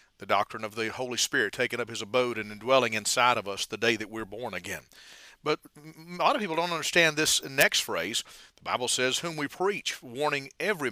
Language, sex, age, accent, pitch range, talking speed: English, male, 50-69, American, 125-165 Hz, 215 wpm